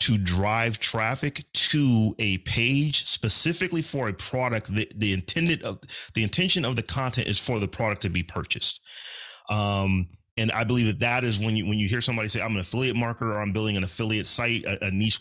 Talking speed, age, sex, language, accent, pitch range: 210 wpm, 30-49, male, English, American, 105-130 Hz